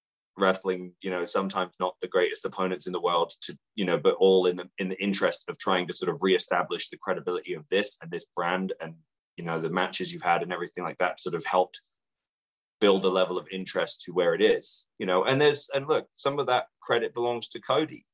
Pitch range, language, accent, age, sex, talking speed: 95-120 Hz, English, British, 20-39, male, 230 wpm